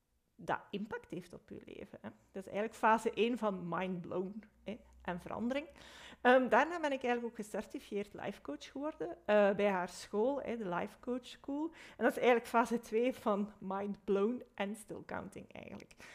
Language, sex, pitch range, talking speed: Dutch, female, 190-245 Hz, 180 wpm